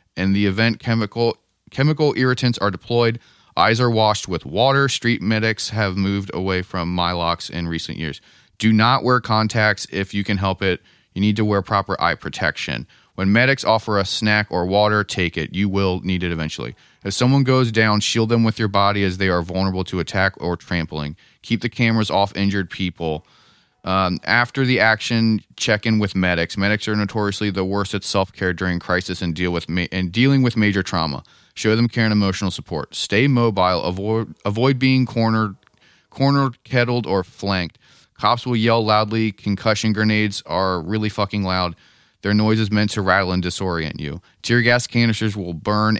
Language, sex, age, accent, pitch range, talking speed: English, male, 30-49, American, 95-110 Hz, 185 wpm